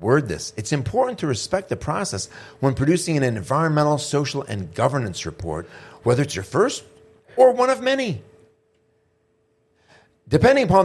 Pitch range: 110-150 Hz